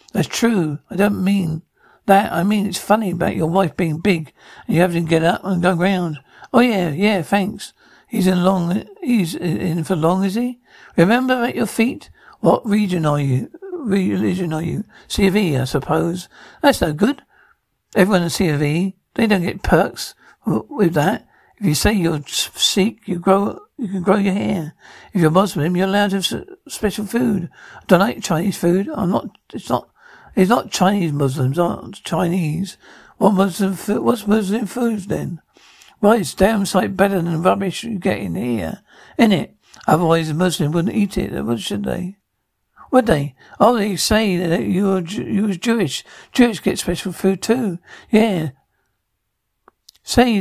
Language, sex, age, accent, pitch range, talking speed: English, male, 60-79, British, 165-205 Hz, 180 wpm